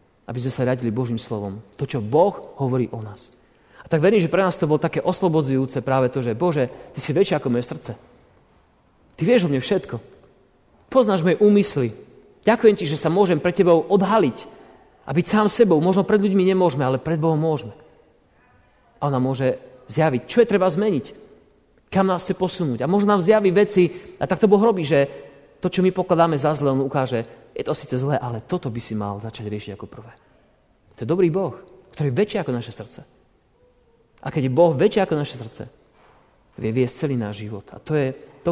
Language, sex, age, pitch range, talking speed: Slovak, male, 40-59, 115-175 Hz, 200 wpm